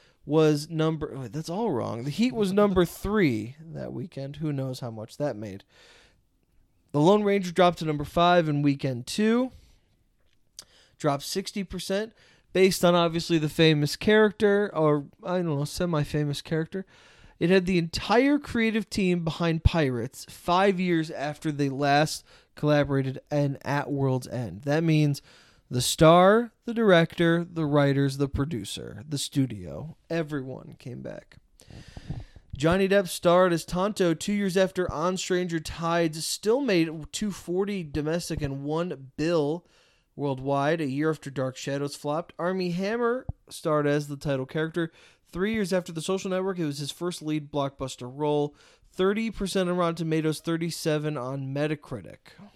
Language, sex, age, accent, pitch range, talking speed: English, male, 20-39, American, 145-180 Hz, 145 wpm